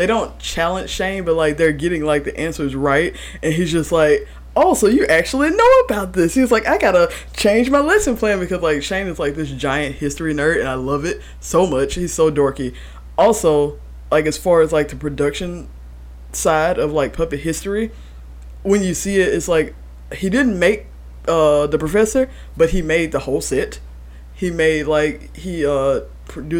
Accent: American